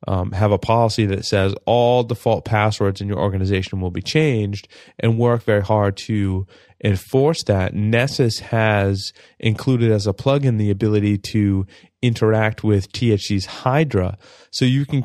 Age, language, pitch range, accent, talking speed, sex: 20-39, English, 105-125 Hz, American, 150 wpm, male